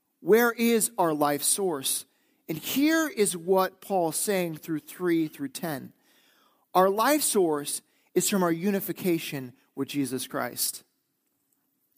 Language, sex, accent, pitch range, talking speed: English, male, American, 160-265 Hz, 125 wpm